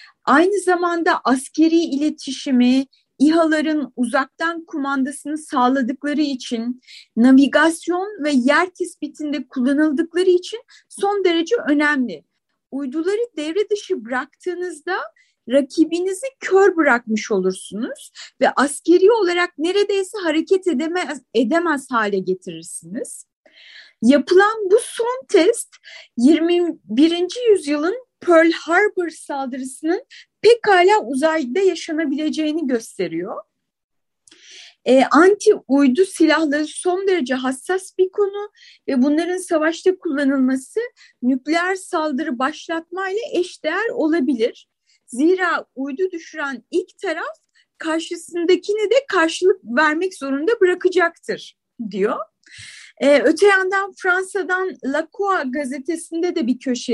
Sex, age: female, 30-49